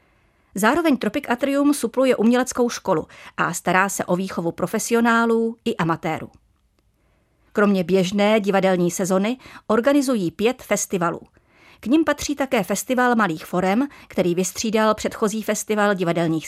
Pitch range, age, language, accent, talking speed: 190-240 Hz, 30-49, Czech, native, 120 wpm